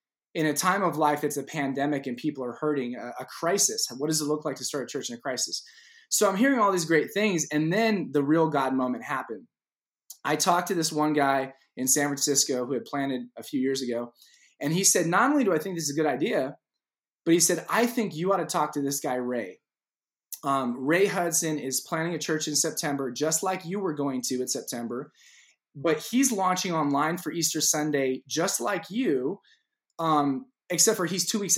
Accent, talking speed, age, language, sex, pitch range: American, 220 wpm, 20-39, English, male, 145-185 Hz